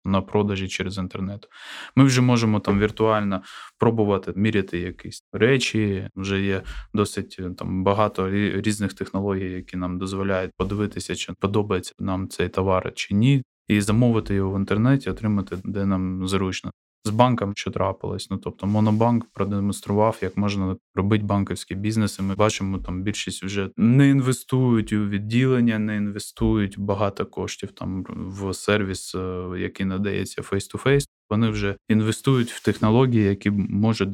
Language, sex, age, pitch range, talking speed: Ukrainian, male, 20-39, 95-110 Hz, 140 wpm